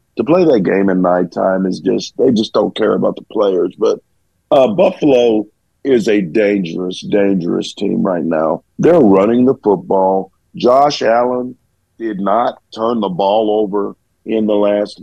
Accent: American